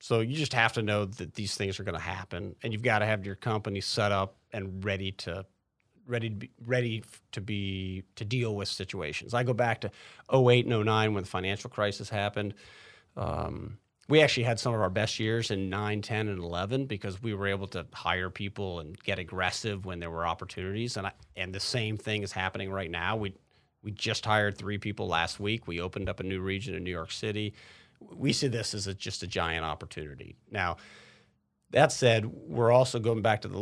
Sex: male